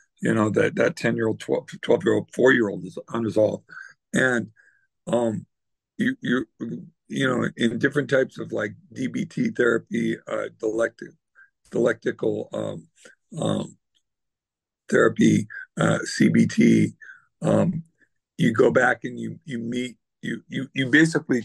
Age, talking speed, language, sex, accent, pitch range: 50-69, 120 wpm, English, male, American, 115-160 Hz